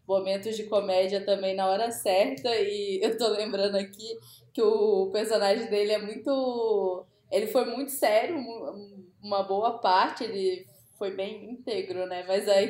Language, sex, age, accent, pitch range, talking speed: Portuguese, female, 10-29, Brazilian, 200-260 Hz, 150 wpm